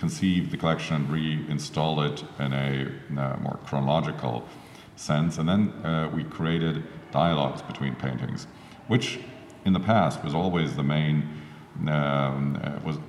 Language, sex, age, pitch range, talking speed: English, male, 50-69, 70-85 Hz, 135 wpm